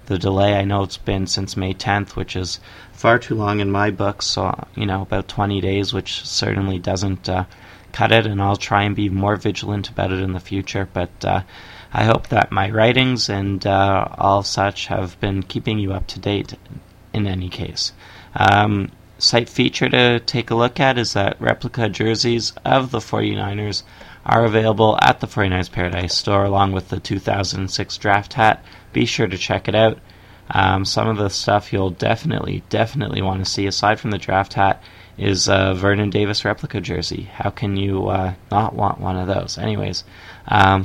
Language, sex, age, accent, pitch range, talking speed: English, male, 20-39, American, 95-110 Hz, 190 wpm